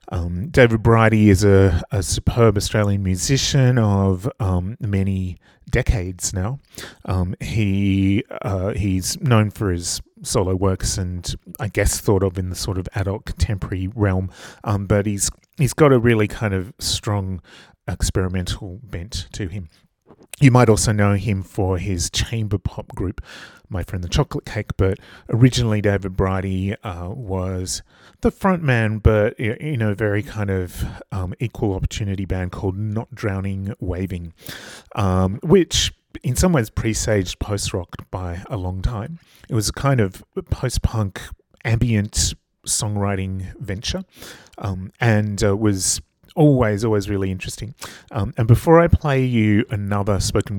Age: 30-49